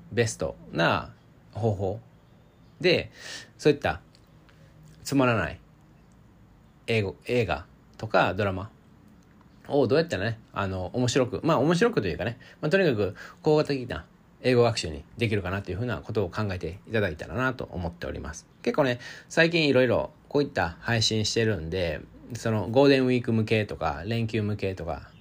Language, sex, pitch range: Japanese, male, 100-130 Hz